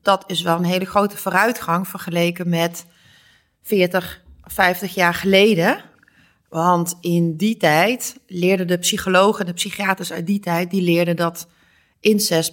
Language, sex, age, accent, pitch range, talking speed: Dutch, female, 30-49, Dutch, 170-210 Hz, 140 wpm